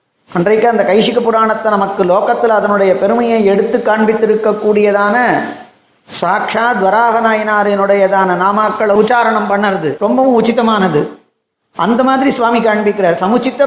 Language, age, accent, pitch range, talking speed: Tamil, 40-59, native, 190-230 Hz, 100 wpm